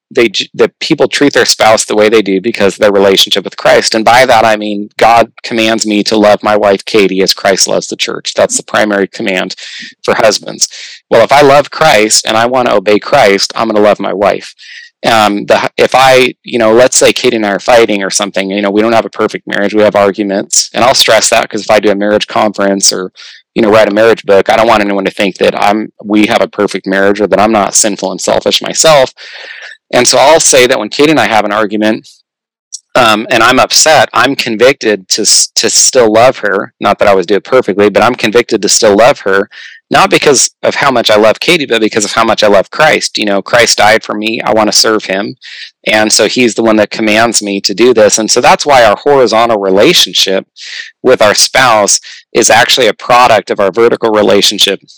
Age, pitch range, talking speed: 30-49, 100-115 Hz, 235 wpm